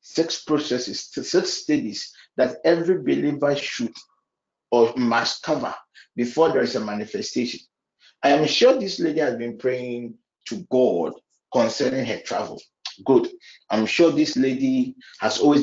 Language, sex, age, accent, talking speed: English, male, 50-69, Nigerian, 140 wpm